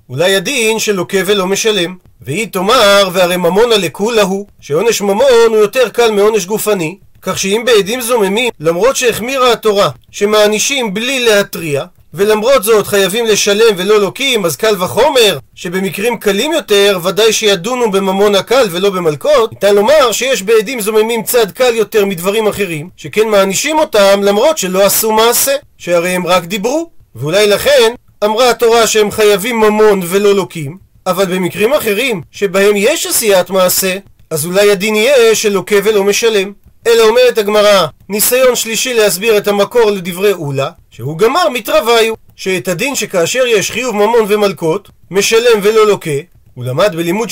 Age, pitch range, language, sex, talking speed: 40-59, 190-230 Hz, Hebrew, male, 145 wpm